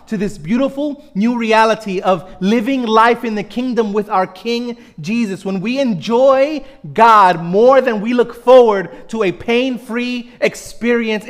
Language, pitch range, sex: English, 215-270 Hz, male